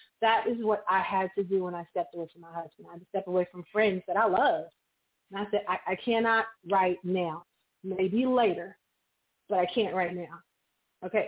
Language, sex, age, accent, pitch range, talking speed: English, female, 30-49, American, 190-245 Hz, 215 wpm